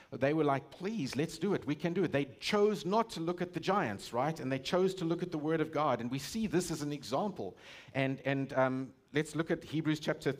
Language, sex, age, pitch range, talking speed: English, male, 50-69, 125-175 Hz, 260 wpm